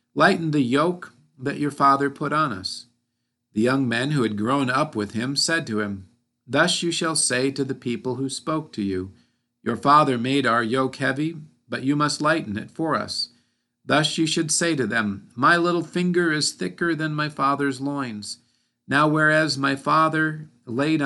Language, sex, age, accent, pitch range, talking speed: English, male, 50-69, American, 120-155 Hz, 185 wpm